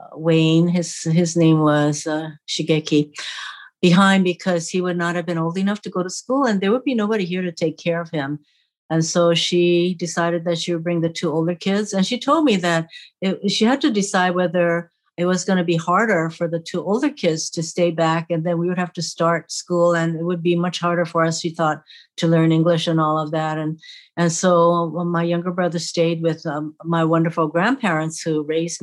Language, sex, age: English, female, 60-79